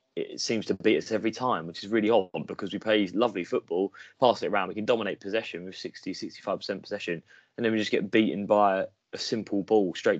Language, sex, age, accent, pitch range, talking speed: English, male, 20-39, British, 90-105 Hz, 220 wpm